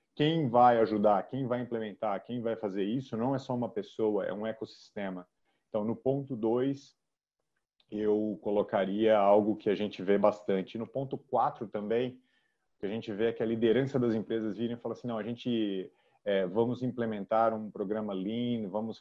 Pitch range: 100-115 Hz